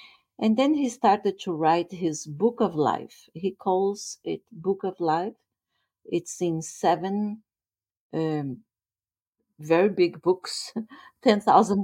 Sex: female